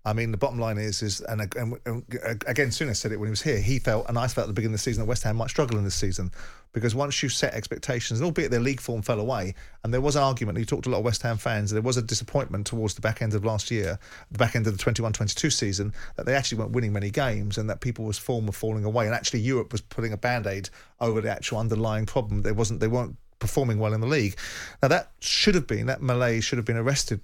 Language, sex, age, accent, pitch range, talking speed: English, male, 40-59, British, 110-130 Hz, 280 wpm